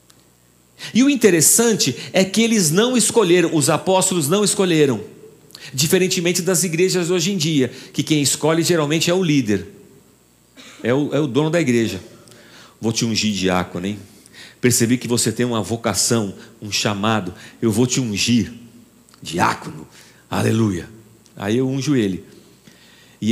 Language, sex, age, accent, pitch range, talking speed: Portuguese, male, 50-69, Brazilian, 115-180 Hz, 145 wpm